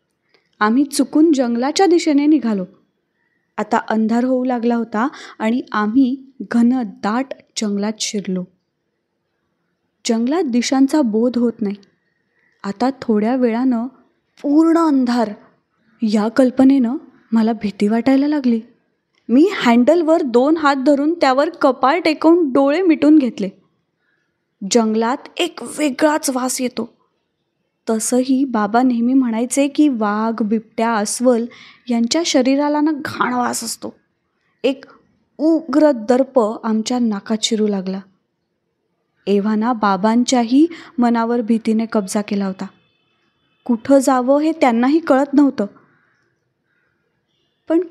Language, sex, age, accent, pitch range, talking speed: Marathi, female, 20-39, native, 220-280 Hz, 105 wpm